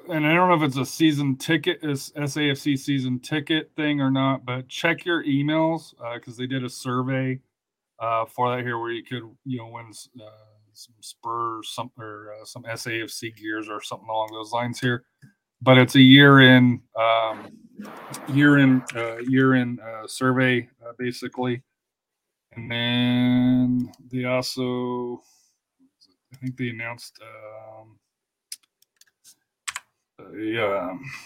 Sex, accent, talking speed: male, American, 150 wpm